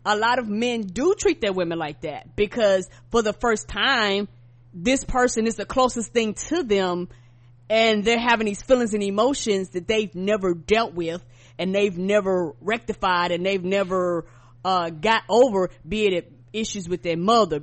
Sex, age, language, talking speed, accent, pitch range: female, 20-39, English, 175 wpm, American, 185-240 Hz